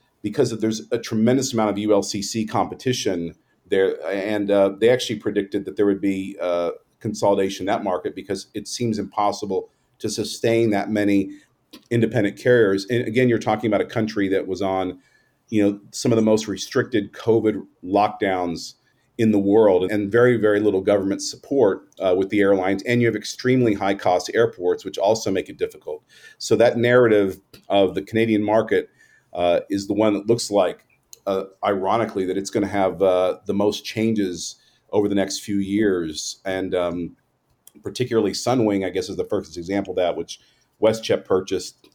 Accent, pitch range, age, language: American, 95-115 Hz, 40-59, English